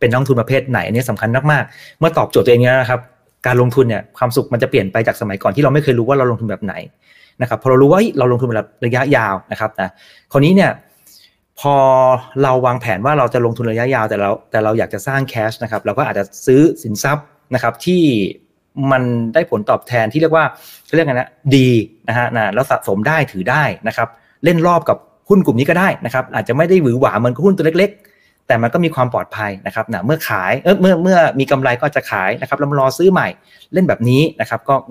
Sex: male